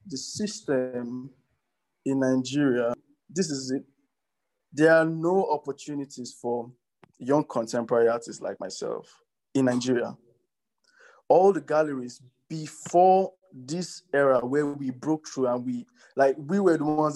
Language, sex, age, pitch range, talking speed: English, male, 20-39, 135-165 Hz, 125 wpm